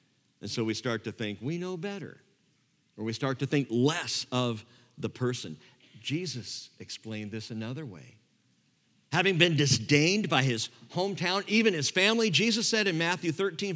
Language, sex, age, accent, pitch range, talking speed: English, male, 50-69, American, 115-185 Hz, 160 wpm